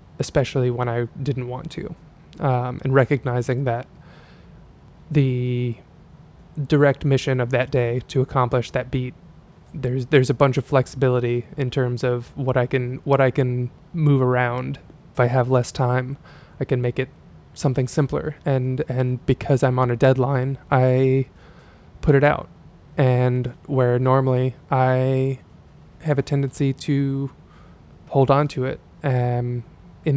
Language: English